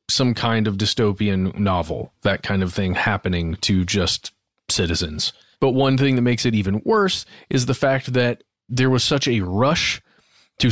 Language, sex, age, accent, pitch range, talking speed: English, male, 30-49, American, 105-130 Hz, 175 wpm